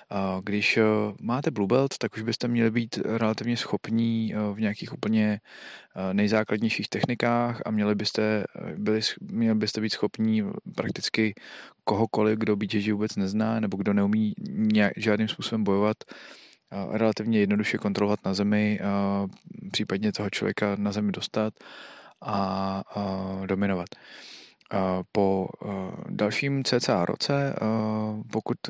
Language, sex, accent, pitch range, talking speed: Czech, male, native, 105-115 Hz, 105 wpm